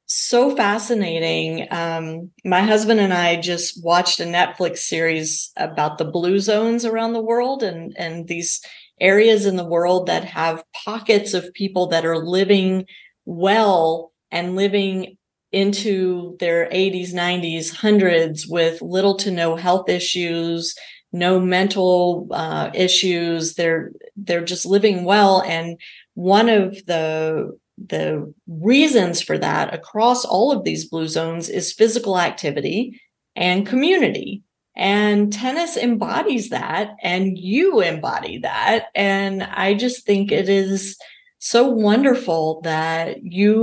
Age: 40-59